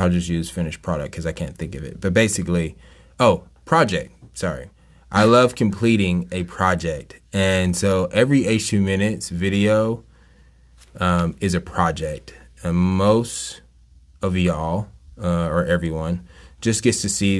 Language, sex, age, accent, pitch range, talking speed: English, male, 20-39, American, 80-95 Hz, 140 wpm